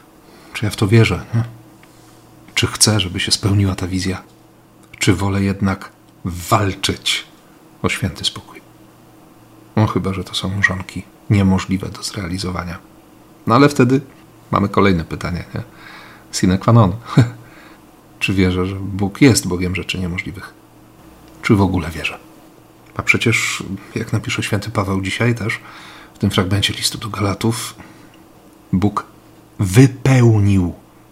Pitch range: 95-110 Hz